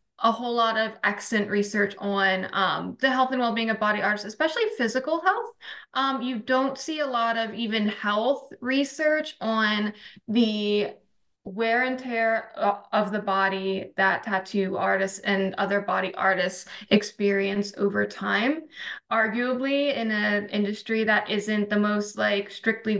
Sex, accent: female, American